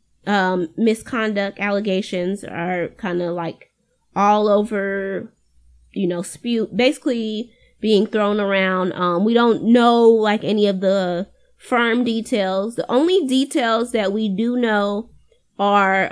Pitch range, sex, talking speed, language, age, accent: 195-245 Hz, female, 125 wpm, English, 20-39, American